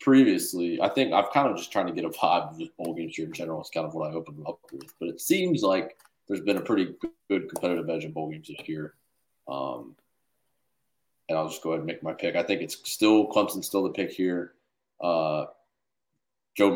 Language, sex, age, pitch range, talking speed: English, male, 20-39, 80-90 Hz, 235 wpm